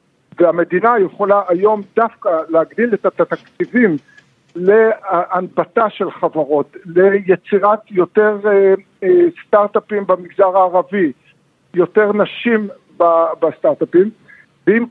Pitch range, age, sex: 175-245 Hz, 50-69, male